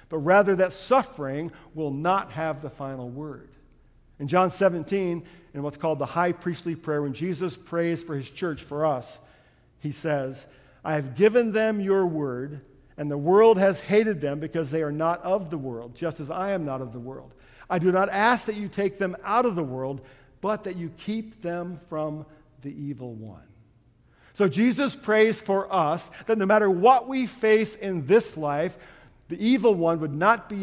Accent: American